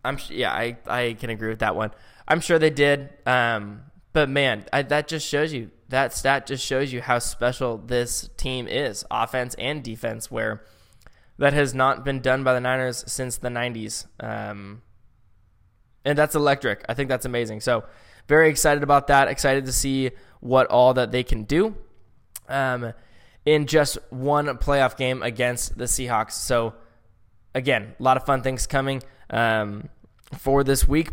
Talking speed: 170 wpm